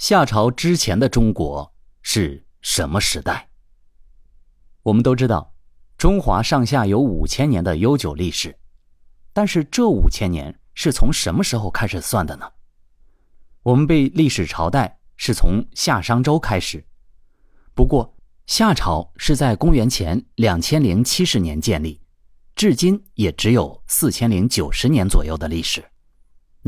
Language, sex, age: Chinese, male, 30-49